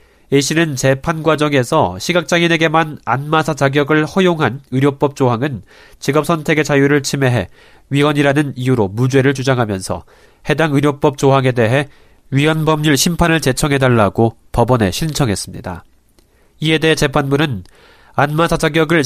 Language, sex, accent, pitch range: Korean, male, native, 125-160 Hz